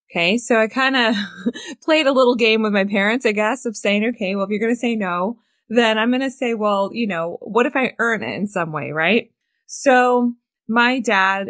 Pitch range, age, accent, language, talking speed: 170-230 Hz, 20-39, American, English, 230 wpm